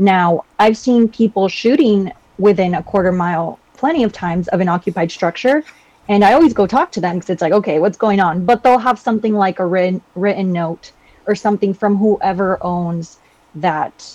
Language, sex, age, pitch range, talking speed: English, female, 20-39, 180-215 Hz, 190 wpm